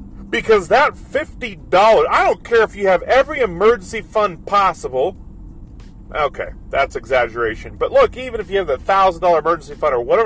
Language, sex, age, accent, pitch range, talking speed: English, male, 40-59, American, 180-255 Hz, 165 wpm